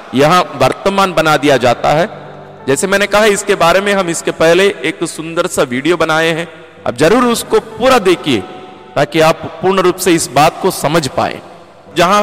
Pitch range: 155-205 Hz